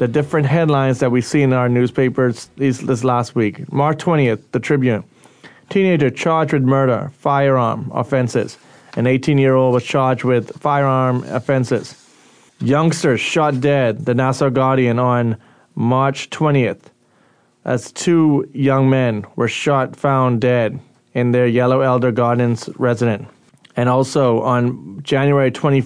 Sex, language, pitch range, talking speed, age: male, English, 120-145 Hz, 130 wpm, 30-49